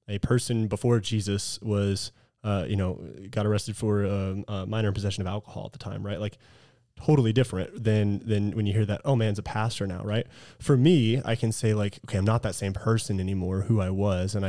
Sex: male